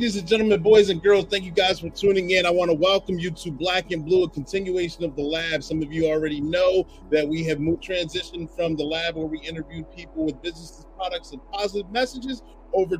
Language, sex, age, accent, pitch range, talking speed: English, male, 30-49, American, 150-195 Hz, 225 wpm